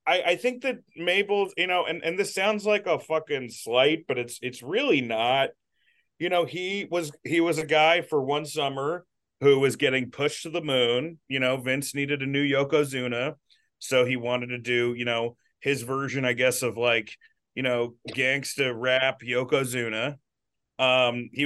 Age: 30-49